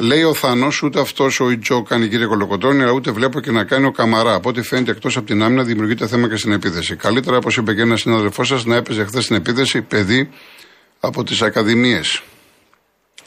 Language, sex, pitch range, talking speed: Greek, male, 110-130 Hz, 210 wpm